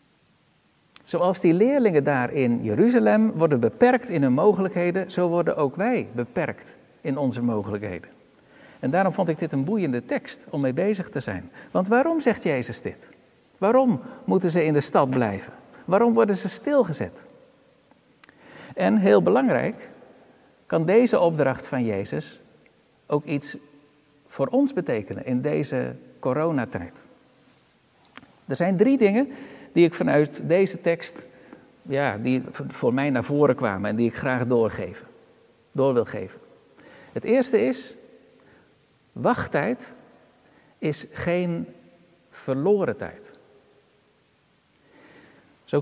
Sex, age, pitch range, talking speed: male, 60-79, 125-205 Hz, 125 wpm